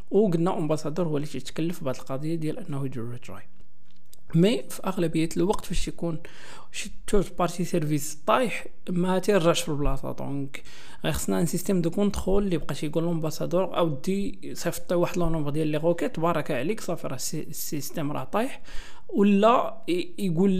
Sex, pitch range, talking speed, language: male, 145-180 Hz, 165 wpm, Arabic